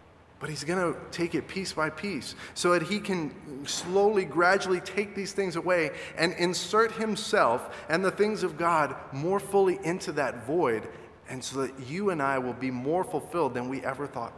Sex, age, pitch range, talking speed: male, 30-49, 125-200 Hz, 190 wpm